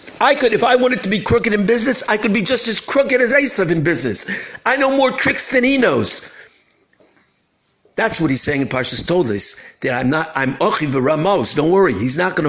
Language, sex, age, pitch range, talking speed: English, male, 60-79, 155-235 Hz, 220 wpm